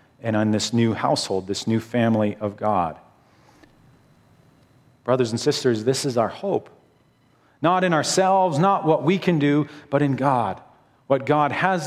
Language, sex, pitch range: English, male, 110-140 Hz